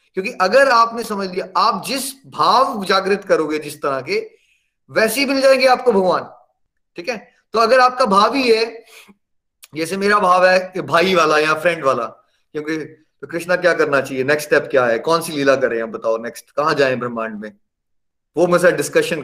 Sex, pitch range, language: male, 155-220 Hz, Hindi